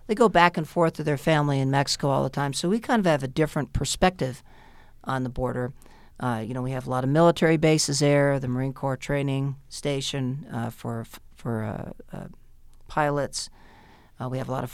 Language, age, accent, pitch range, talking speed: English, 50-69, American, 135-180 Hz, 210 wpm